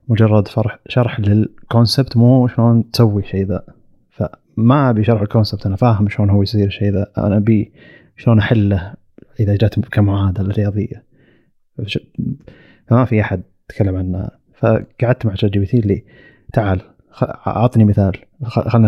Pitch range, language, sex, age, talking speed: 100-115 Hz, Arabic, male, 30-49, 160 wpm